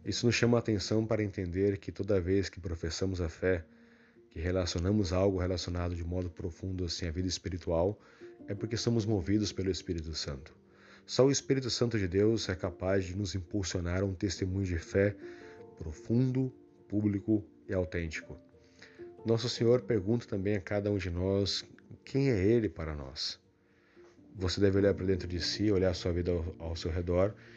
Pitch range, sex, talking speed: 90-110 Hz, male, 170 wpm